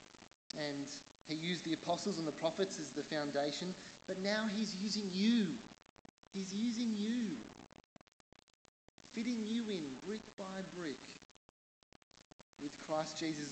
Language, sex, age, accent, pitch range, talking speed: English, male, 20-39, Australian, 145-200 Hz, 125 wpm